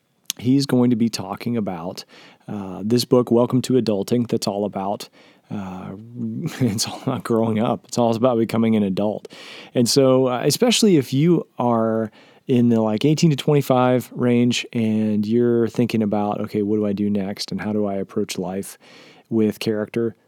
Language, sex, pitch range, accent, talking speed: English, male, 110-130 Hz, American, 180 wpm